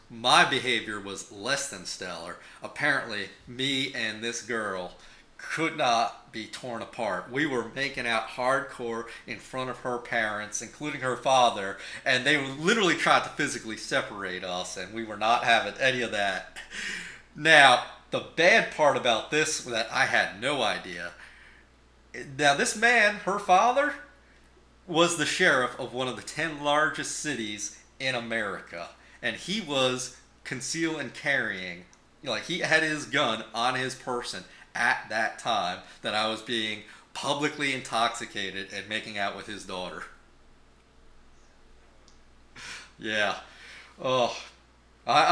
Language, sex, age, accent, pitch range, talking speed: English, male, 40-59, American, 105-140 Hz, 140 wpm